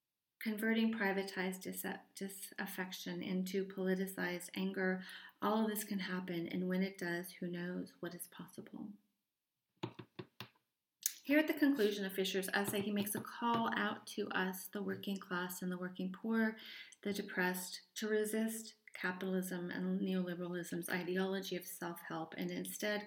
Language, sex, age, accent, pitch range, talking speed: English, female, 30-49, American, 180-205 Hz, 140 wpm